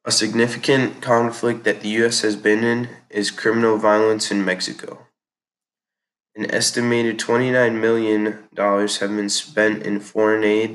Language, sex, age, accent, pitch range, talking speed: English, male, 20-39, American, 105-110 Hz, 135 wpm